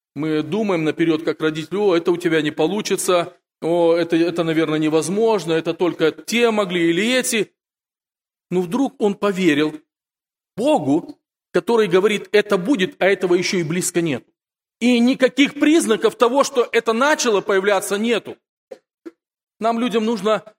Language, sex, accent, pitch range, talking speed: Russian, male, native, 175-245 Hz, 145 wpm